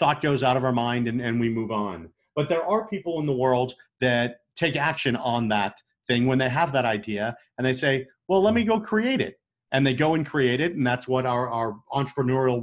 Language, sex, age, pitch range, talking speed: English, male, 40-59, 120-150 Hz, 240 wpm